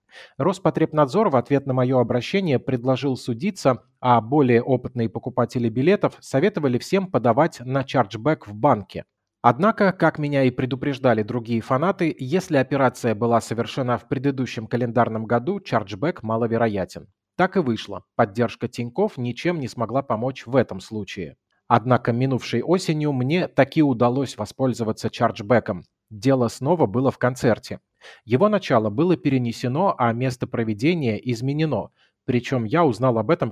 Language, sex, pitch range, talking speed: Russian, male, 115-145 Hz, 135 wpm